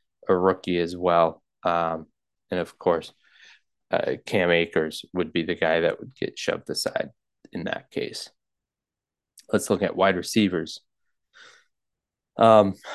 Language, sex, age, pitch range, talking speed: English, male, 20-39, 90-95 Hz, 135 wpm